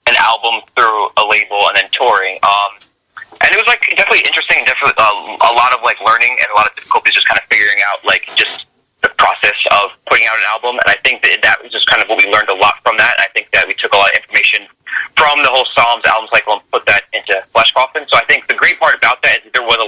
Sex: male